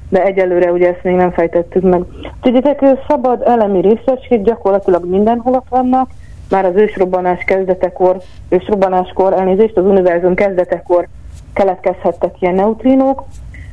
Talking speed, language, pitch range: 120 wpm, Hungarian, 185-220 Hz